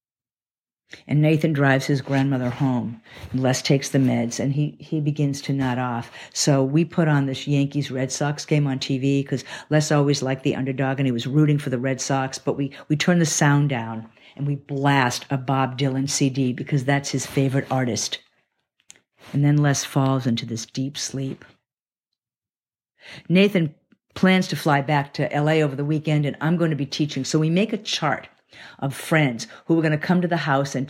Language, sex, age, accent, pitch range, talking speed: English, female, 50-69, American, 135-155 Hz, 195 wpm